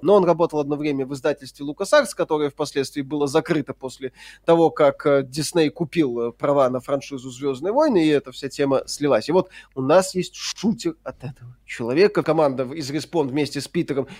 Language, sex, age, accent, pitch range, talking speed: Russian, male, 20-39, native, 140-175 Hz, 180 wpm